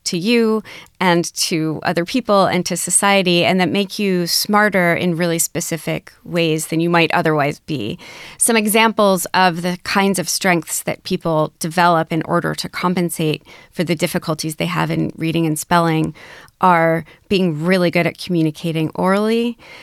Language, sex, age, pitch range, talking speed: English, female, 30-49, 165-195 Hz, 160 wpm